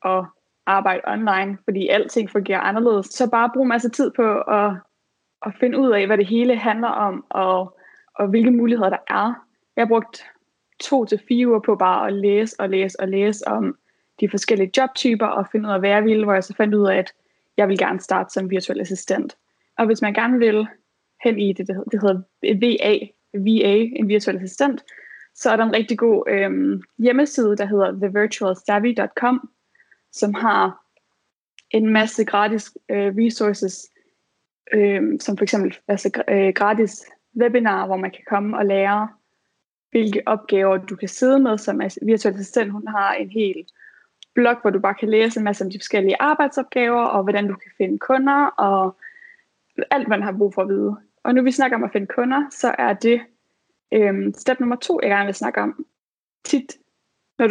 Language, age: Danish, 20-39